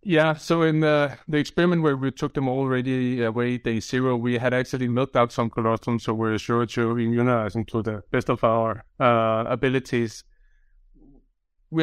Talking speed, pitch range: 180 wpm, 115-135 Hz